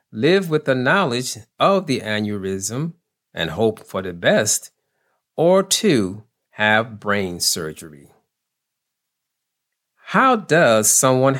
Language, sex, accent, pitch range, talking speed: English, male, American, 105-165 Hz, 105 wpm